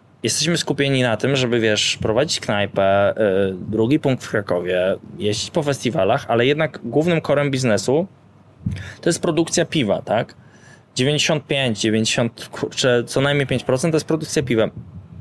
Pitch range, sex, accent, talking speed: 110-140 Hz, male, native, 140 wpm